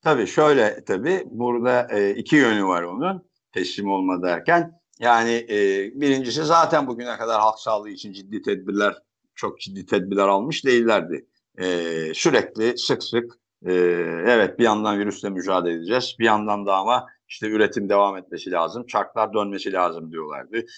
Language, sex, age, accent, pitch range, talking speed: Turkish, male, 60-79, native, 100-120 Hz, 140 wpm